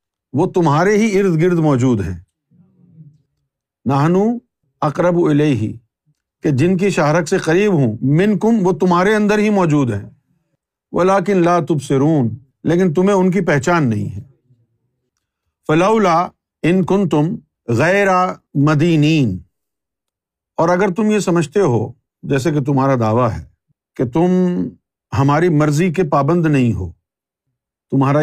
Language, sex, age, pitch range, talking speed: Urdu, male, 50-69, 130-175 Hz, 120 wpm